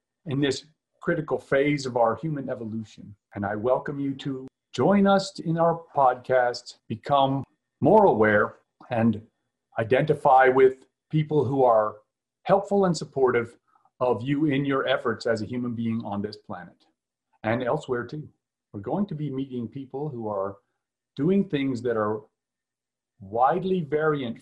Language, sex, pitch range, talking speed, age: English, male, 115-140 Hz, 145 wpm, 40-59